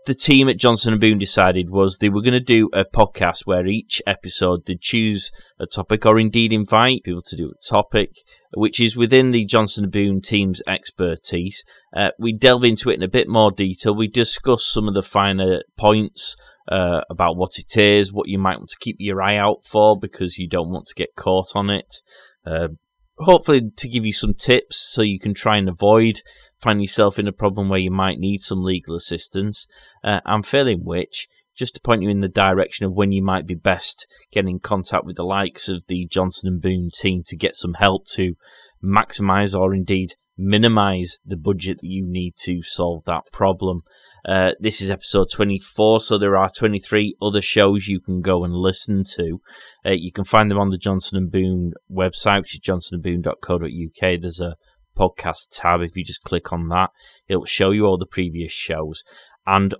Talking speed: 200 wpm